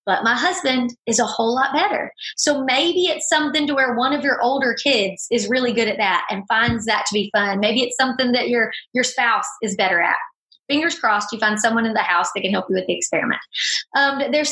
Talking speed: 235 wpm